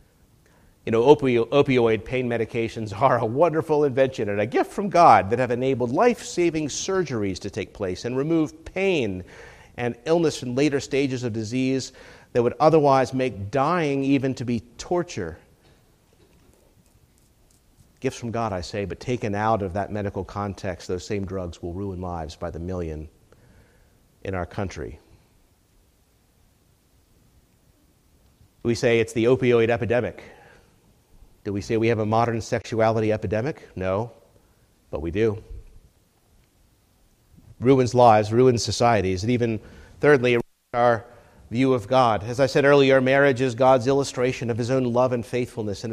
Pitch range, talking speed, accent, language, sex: 100-130 Hz, 145 wpm, American, English, male